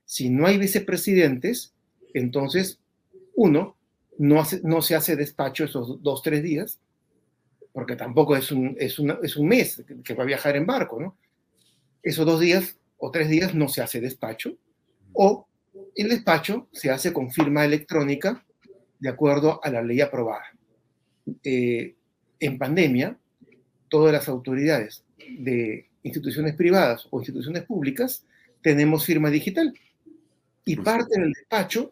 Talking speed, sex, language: 135 wpm, male, Spanish